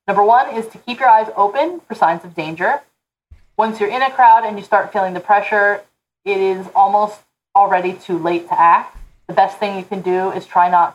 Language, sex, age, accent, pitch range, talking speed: English, female, 30-49, American, 175-225 Hz, 220 wpm